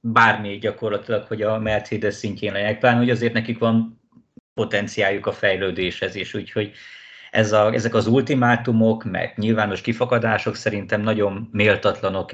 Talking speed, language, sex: 135 wpm, Hungarian, male